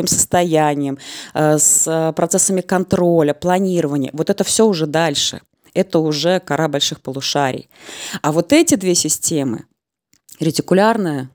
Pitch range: 150-205 Hz